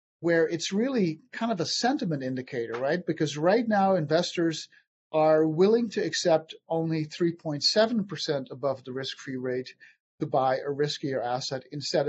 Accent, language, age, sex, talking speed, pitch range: American, English, 50-69, male, 145 wpm, 145-175 Hz